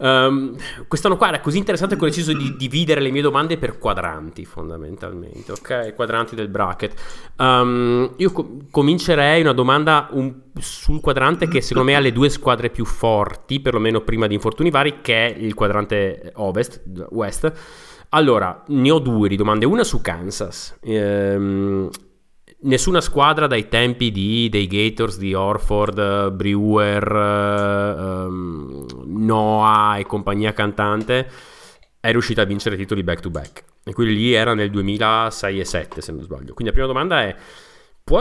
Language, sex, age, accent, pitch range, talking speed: Italian, male, 30-49, native, 100-140 Hz, 160 wpm